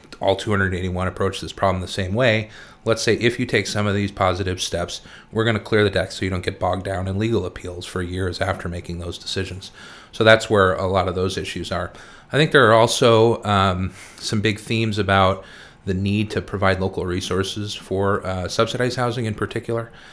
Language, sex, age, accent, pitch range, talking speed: English, male, 30-49, American, 95-110 Hz, 210 wpm